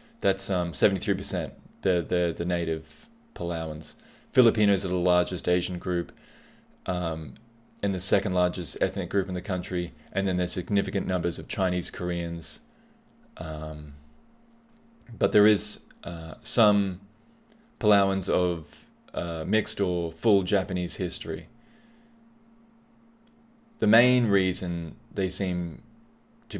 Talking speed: 115 wpm